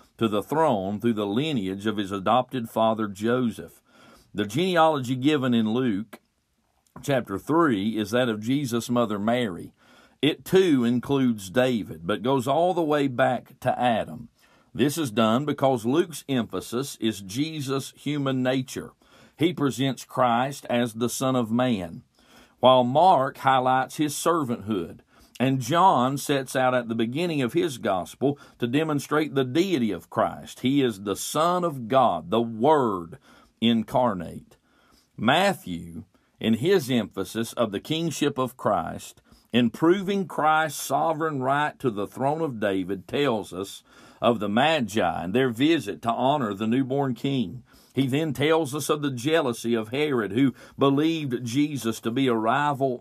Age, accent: 40-59, American